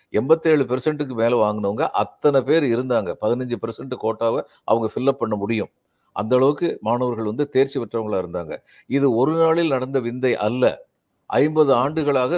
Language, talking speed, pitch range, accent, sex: Tamil, 135 wpm, 135-165 Hz, native, male